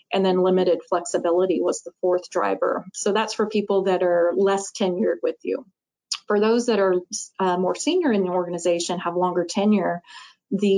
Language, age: English, 30-49